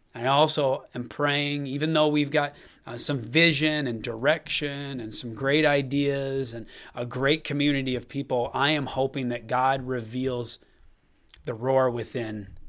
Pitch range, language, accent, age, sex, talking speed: 130-155 Hz, English, American, 30-49, male, 150 wpm